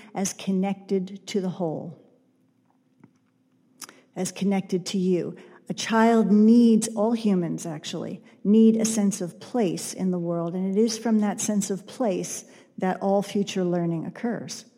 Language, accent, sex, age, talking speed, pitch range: English, American, female, 50-69, 145 wpm, 185-225 Hz